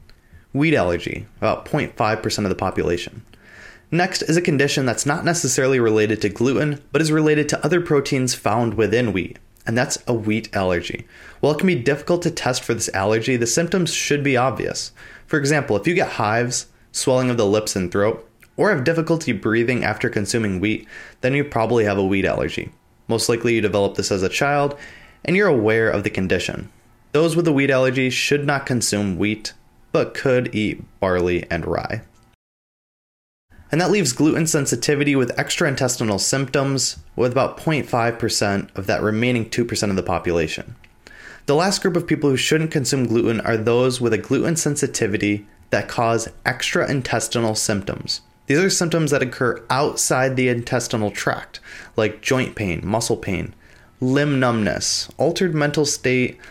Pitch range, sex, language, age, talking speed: 110-145 Hz, male, English, 20-39, 170 wpm